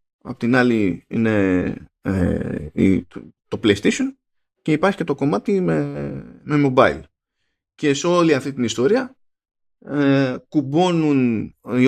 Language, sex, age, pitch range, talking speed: Greek, male, 20-39, 110-145 Hz, 120 wpm